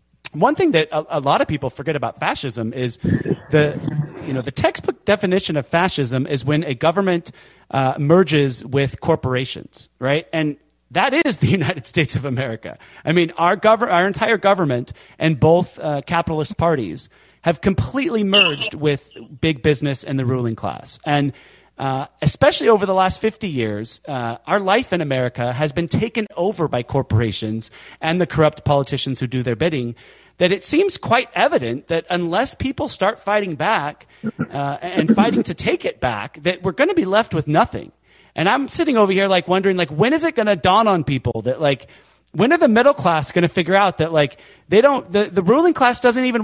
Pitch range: 140-205 Hz